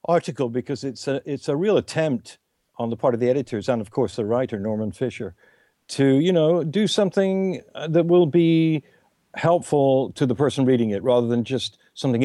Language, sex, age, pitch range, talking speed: English, male, 60-79, 115-145 Hz, 190 wpm